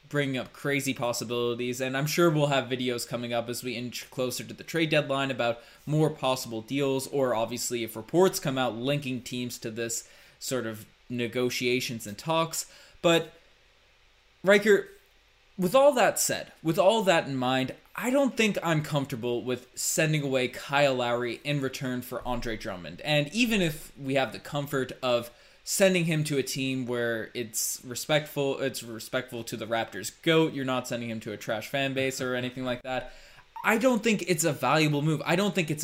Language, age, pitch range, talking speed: English, 20-39, 125-155 Hz, 185 wpm